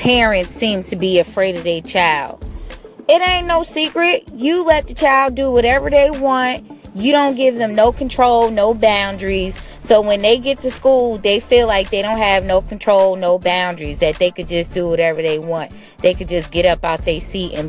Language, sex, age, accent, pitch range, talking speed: English, female, 20-39, American, 185-280 Hz, 205 wpm